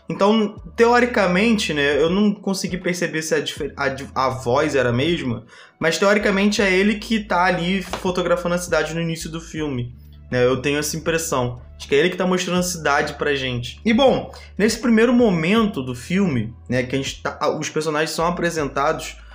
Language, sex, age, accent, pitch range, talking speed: Portuguese, male, 20-39, Brazilian, 150-210 Hz, 190 wpm